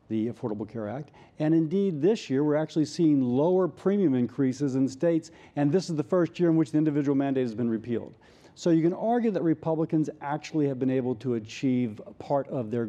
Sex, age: male, 50-69